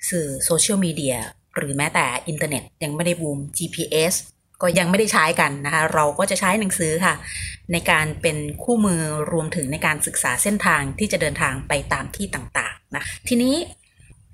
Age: 30-49